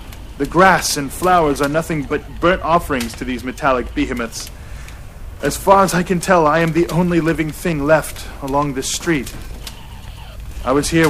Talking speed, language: 175 wpm, English